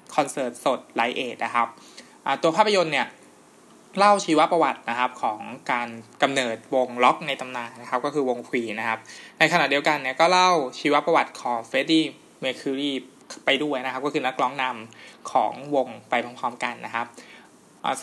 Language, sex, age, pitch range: Thai, male, 20-39, 125-155 Hz